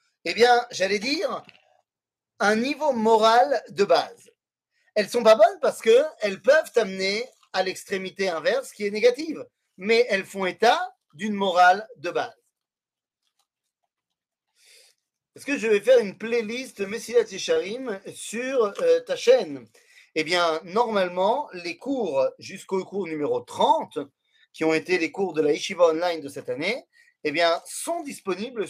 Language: French